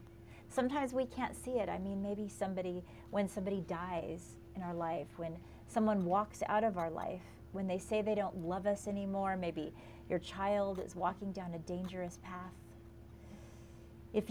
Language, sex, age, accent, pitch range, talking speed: English, female, 40-59, American, 175-215 Hz, 170 wpm